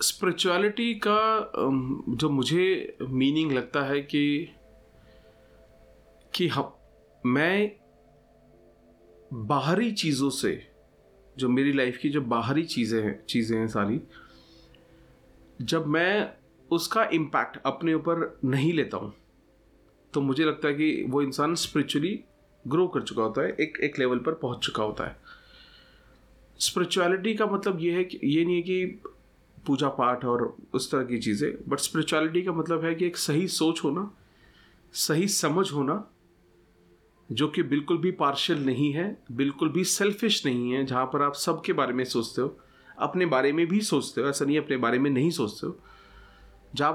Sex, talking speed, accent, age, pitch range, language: male, 155 wpm, native, 30-49, 120-175 Hz, Hindi